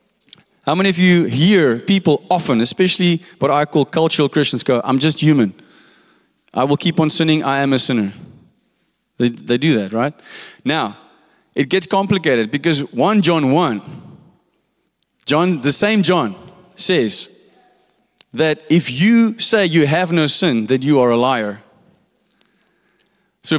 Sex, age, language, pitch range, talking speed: male, 30-49, English, 120-180 Hz, 150 wpm